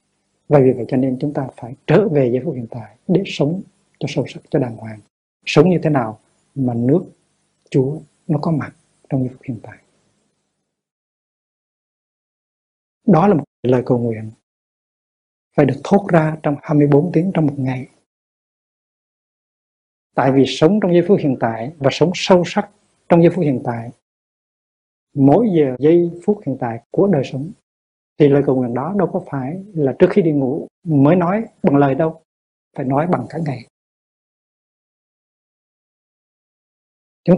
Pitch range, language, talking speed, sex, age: 130-165 Hz, Vietnamese, 160 wpm, male, 60-79